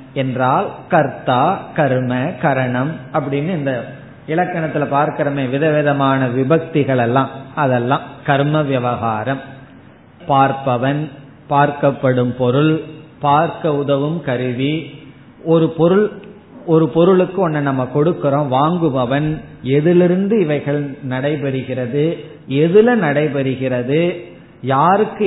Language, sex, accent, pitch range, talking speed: Tamil, male, native, 135-170 Hz, 80 wpm